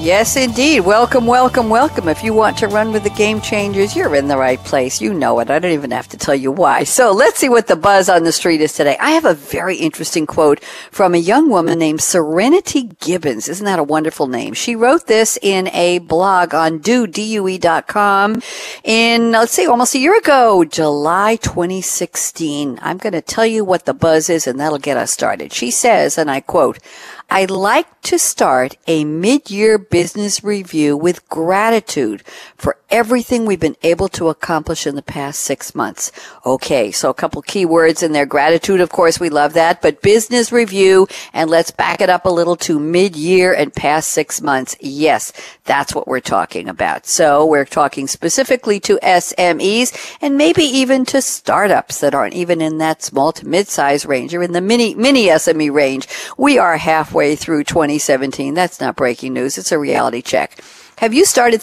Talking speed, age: 190 wpm, 60-79